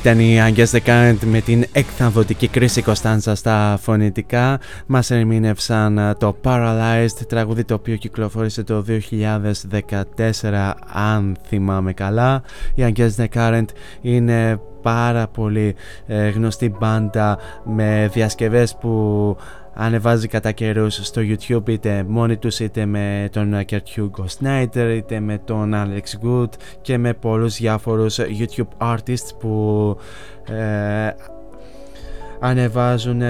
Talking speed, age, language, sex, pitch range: 115 wpm, 20-39, Greek, male, 105-115 Hz